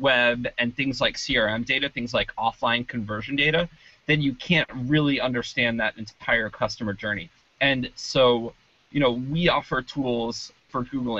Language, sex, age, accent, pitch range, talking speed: English, male, 20-39, American, 115-140 Hz, 155 wpm